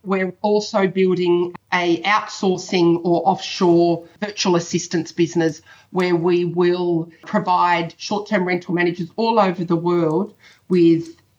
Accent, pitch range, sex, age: Australian, 170-190 Hz, female, 40-59